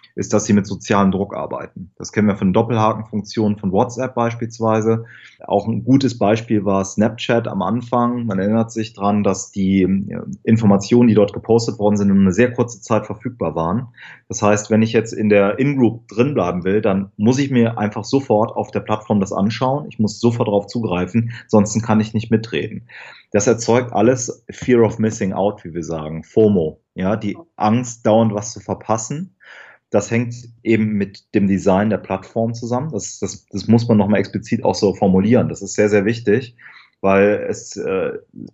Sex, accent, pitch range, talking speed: male, German, 100-120 Hz, 185 wpm